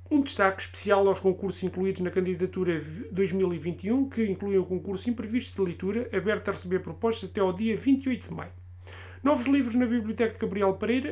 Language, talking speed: Portuguese, 180 wpm